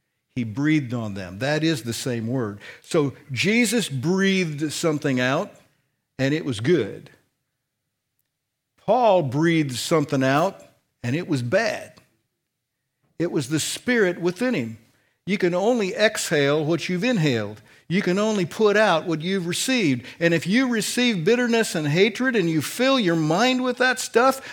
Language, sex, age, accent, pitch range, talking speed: English, male, 60-79, American, 135-210 Hz, 150 wpm